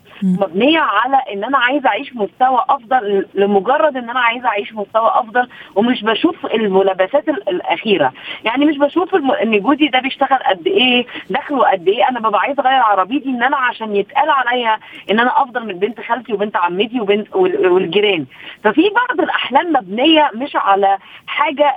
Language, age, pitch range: Arabic, 20-39, 215-300 Hz